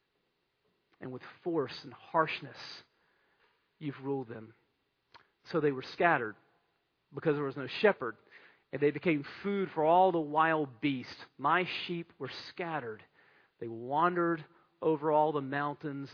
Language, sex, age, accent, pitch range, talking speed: English, male, 40-59, American, 140-220 Hz, 135 wpm